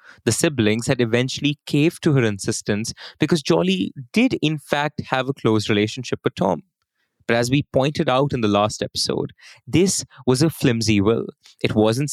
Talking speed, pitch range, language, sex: 175 wpm, 115-165 Hz, English, male